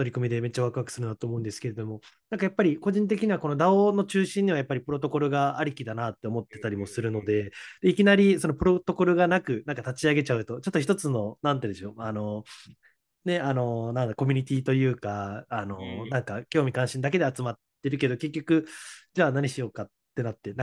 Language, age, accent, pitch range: Japanese, 20-39, native, 115-160 Hz